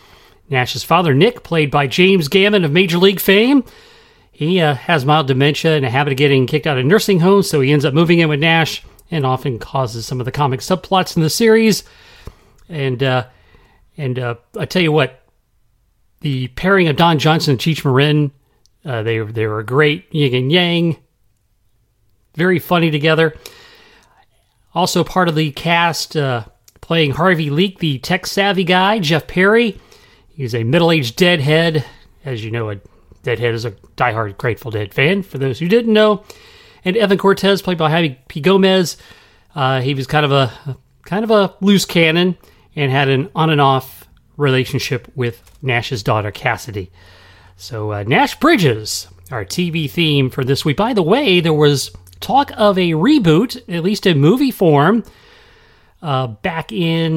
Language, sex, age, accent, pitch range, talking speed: English, male, 40-59, American, 125-180 Hz, 170 wpm